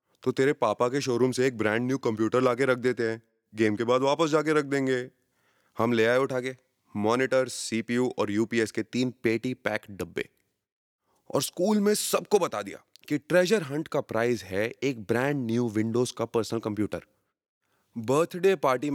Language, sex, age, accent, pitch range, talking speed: Hindi, male, 20-39, native, 110-145 Hz, 175 wpm